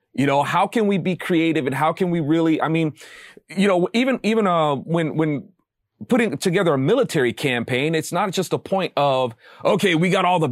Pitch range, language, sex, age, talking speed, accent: 140-195 Hz, English, male, 30-49, 210 wpm, American